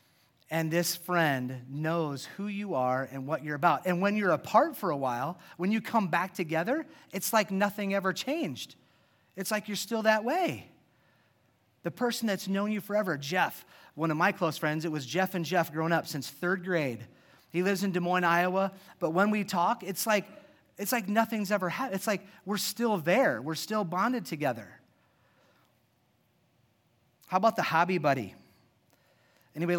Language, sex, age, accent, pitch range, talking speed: English, male, 30-49, American, 155-200 Hz, 175 wpm